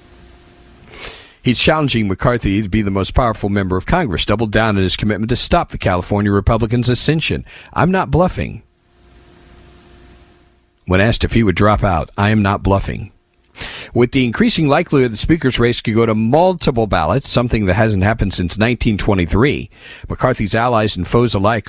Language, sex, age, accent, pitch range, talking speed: English, male, 50-69, American, 95-125 Hz, 165 wpm